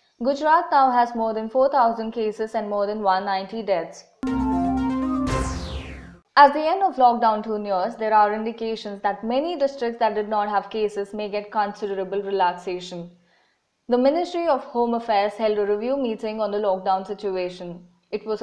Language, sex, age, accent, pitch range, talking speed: English, female, 20-39, Indian, 195-235 Hz, 160 wpm